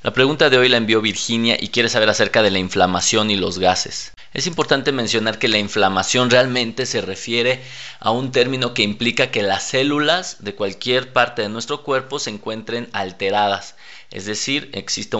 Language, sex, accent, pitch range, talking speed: Spanish, male, Mexican, 105-130 Hz, 180 wpm